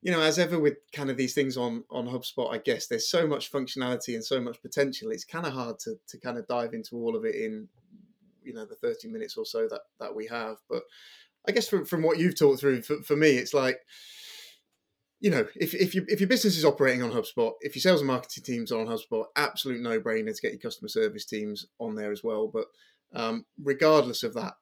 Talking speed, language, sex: 240 wpm, English, male